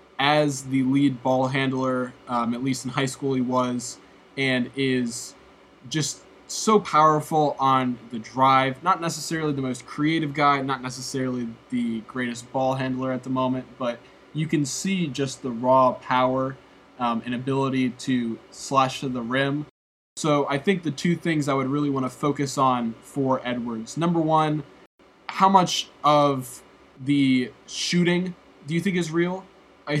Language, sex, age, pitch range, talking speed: English, male, 20-39, 125-150 Hz, 160 wpm